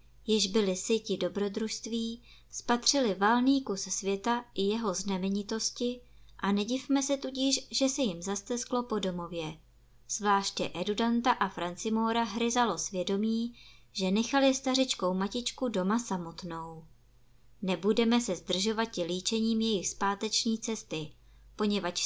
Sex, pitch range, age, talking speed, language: male, 180-235 Hz, 20-39, 115 wpm, Czech